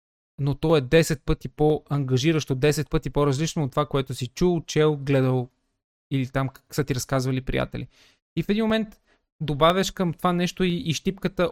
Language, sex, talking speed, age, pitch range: Bulgarian, male, 175 wpm, 20-39, 135-165 Hz